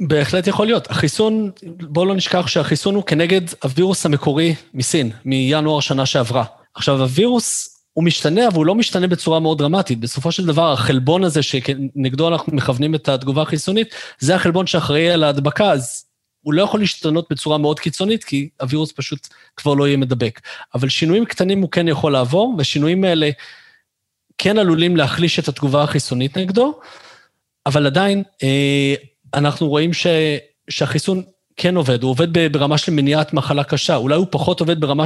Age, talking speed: 30-49, 155 wpm